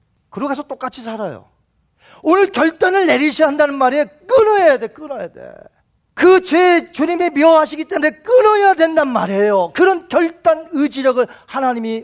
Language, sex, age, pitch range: Korean, male, 40-59, 210-295 Hz